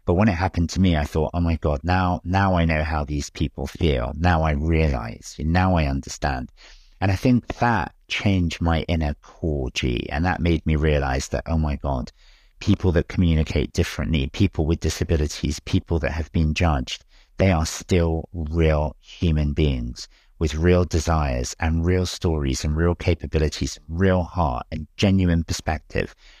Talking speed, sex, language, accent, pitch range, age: 170 wpm, male, English, British, 75-90 Hz, 50-69